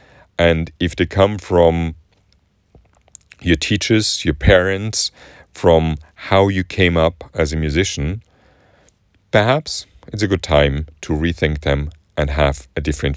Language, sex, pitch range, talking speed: English, male, 80-100 Hz, 130 wpm